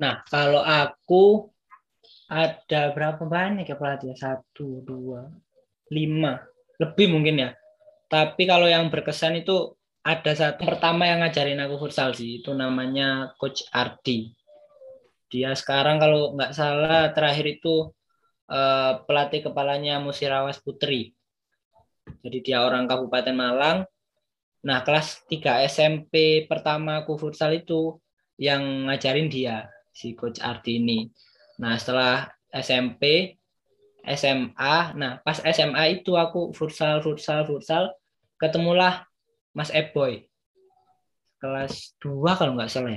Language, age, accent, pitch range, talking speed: Indonesian, 20-39, native, 130-160 Hz, 115 wpm